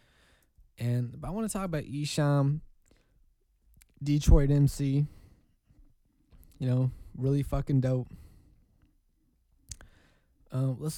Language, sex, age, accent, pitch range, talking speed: English, male, 20-39, American, 115-145 Hz, 95 wpm